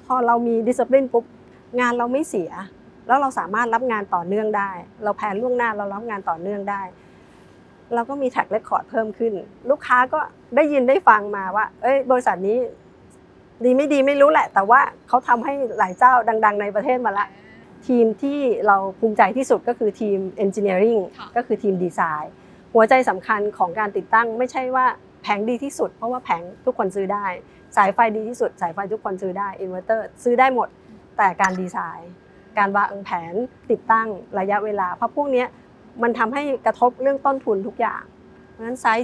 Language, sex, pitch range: Thai, female, 200-250 Hz